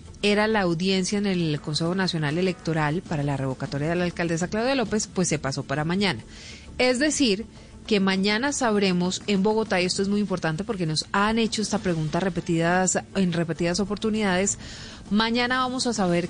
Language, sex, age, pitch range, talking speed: Spanish, female, 30-49, 160-205 Hz, 175 wpm